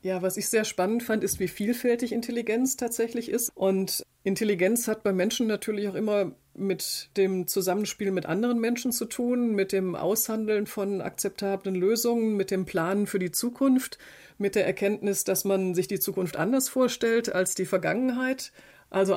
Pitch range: 185-220 Hz